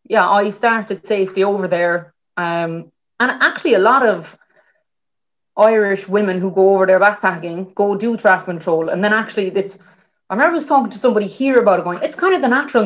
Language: English